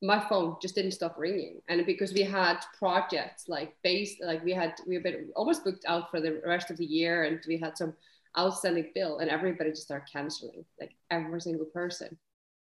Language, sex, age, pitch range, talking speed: English, female, 20-39, 170-200 Hz, 205 wpm